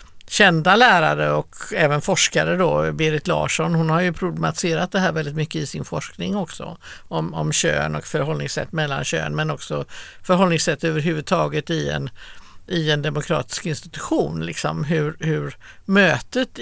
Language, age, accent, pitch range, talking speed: Swedish, 60-79, native, 155-180 Hz, 150 wpm